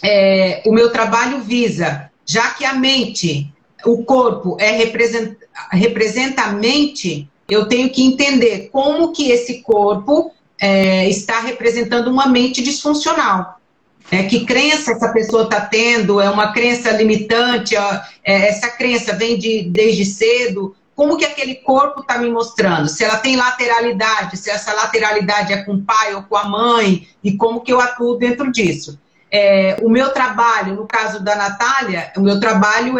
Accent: Brazilian